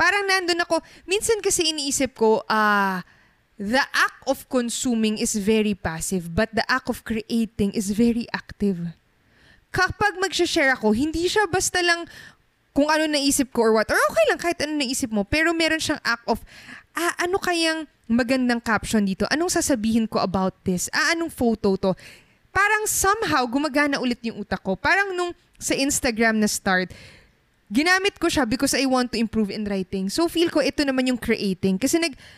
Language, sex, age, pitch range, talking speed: Filipino, female, 20-39, 215-310 Hz, 180 wpm